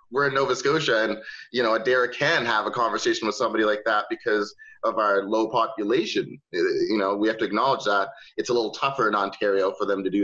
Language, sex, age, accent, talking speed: English, male, 30-49, American, 230 wpm